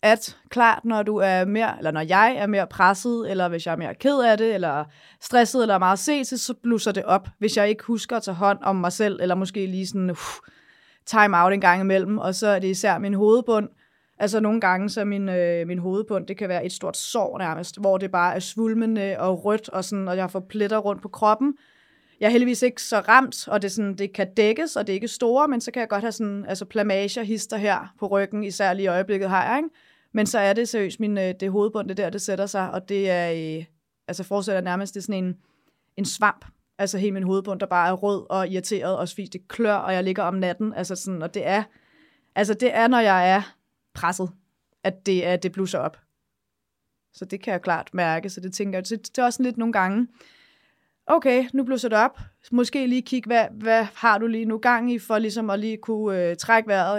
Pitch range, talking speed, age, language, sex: 190-225 Hz, 230 wpm, 20-39, Danish, female